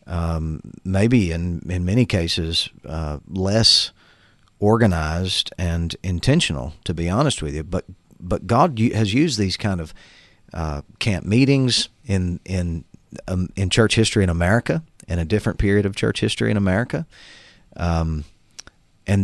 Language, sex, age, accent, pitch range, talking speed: English, male, 40-59, American, 85-110 Hz, 145 wpm